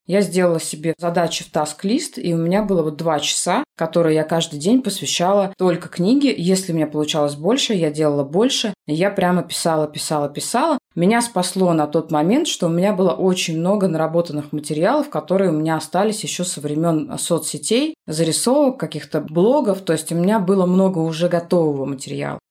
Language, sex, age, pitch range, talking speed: Russian, female, 20-39, 160-200 Hz, 175 wpm